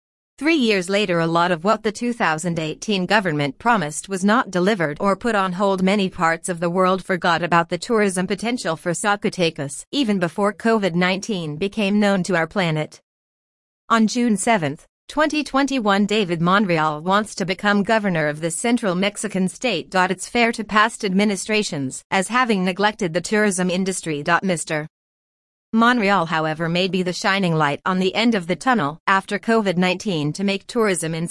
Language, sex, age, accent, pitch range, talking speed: English, female, 40-59, American, 170-215 Hz, 165 wpm